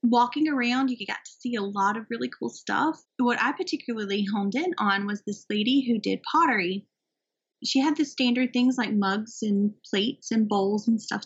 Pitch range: 205-270 Hz